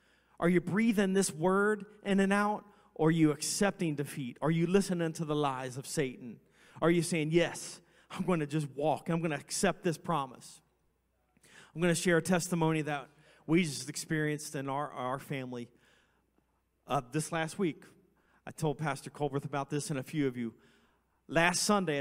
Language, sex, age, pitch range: English, male, 40-59, 135-165 Hz